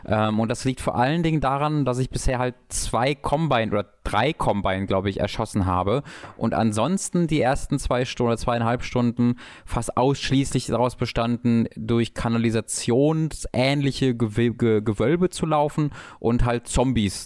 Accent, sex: German, male